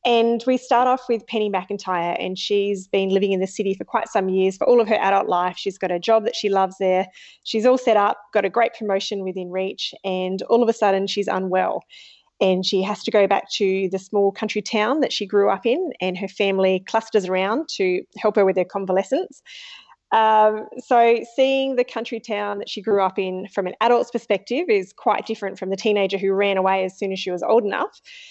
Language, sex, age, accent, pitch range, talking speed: English, female, 20-39, Australian, 195-230 Hz, 225 wpm